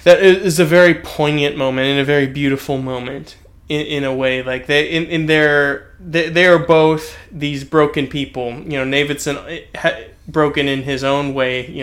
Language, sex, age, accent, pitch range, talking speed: English, male, 20-39, American, 125-155 Hz, 185 wpm